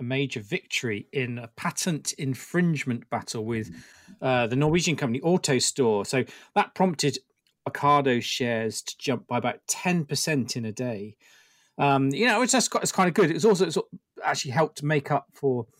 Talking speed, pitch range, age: 165 wpm, 130-160 Hz, 40-59